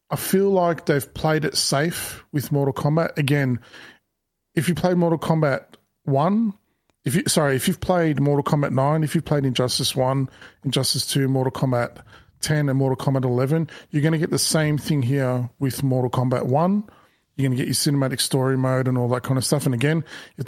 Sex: male